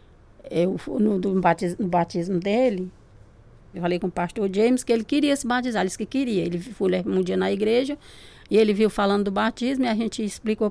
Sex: female